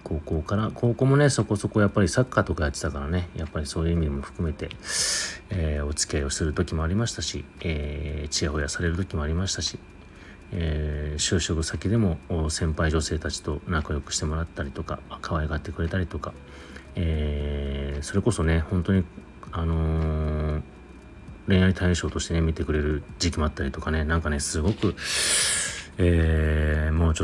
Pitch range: 75-95 Hz